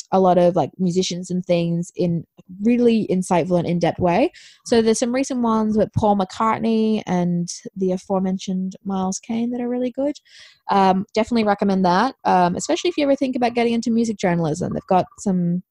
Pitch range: 180-230 Hz